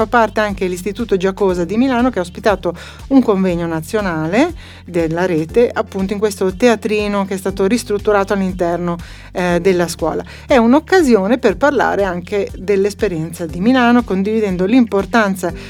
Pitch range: 180-215 Hz